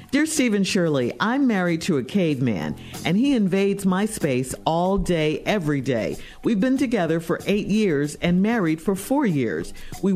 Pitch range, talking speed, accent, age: 150-220 Hz, 170 wpm, American, 50-69